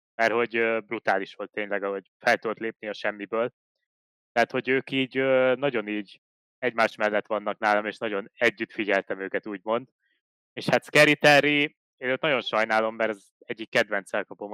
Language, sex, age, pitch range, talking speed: Hungarian, male, 20-39, 105-130 Hz, 160 wpm